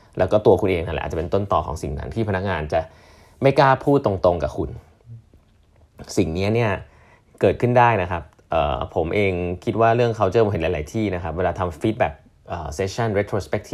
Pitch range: 90-125 Hz